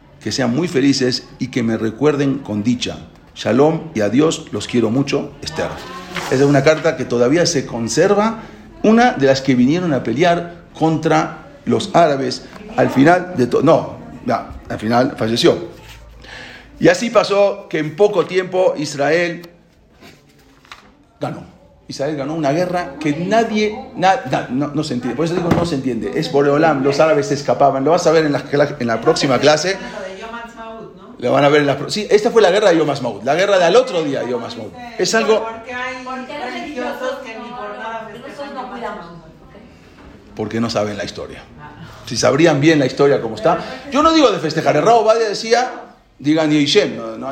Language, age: English, 40-59